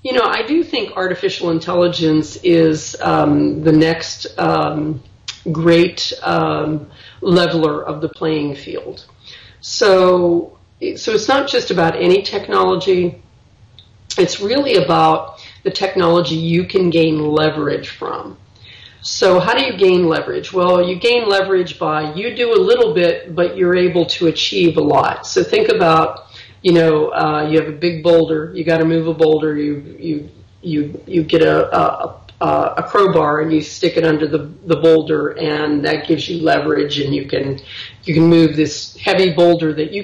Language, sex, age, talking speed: English, female, 40-59, 165 wpm